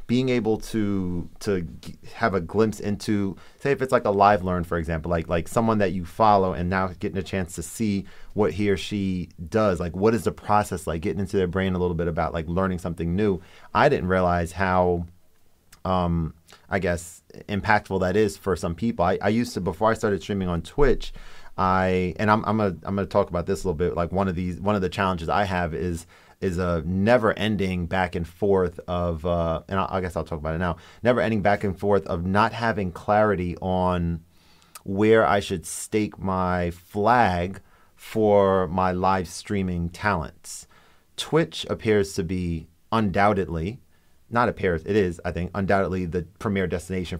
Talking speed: 190 wpm